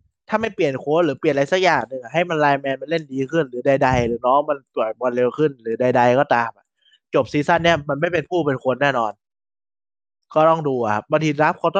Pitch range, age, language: 135-175 Hz, 20-39, Thai